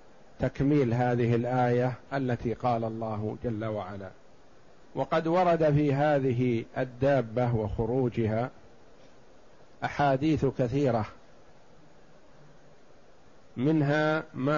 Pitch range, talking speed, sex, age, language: 120-145 Hz, 75 wpm, male, 50-69, Arabic